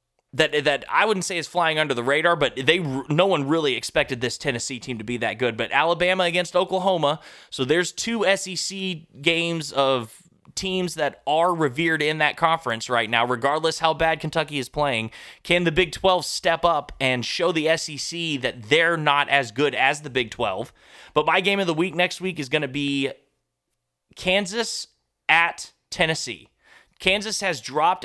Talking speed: 180 wpm